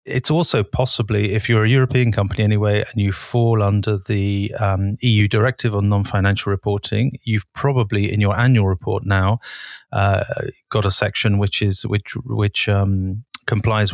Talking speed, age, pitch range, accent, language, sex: 160 wpm, 30-49, 100-115 Hz, British, English, male